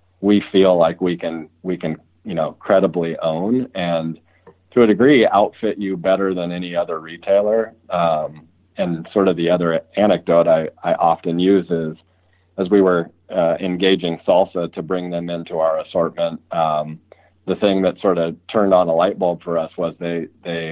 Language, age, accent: English, 40-59, American